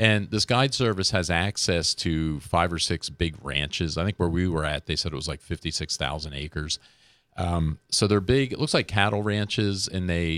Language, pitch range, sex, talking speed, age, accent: English, 80-100 Hz, male, 210 wpm, 40-59, American